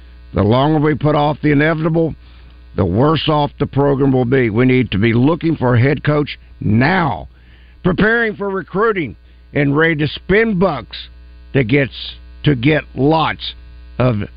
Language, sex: English, male